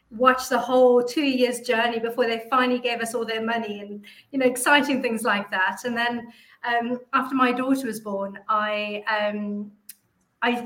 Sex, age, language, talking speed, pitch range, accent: female, 40-59, English, 180 wpm, 210-240 Hz, British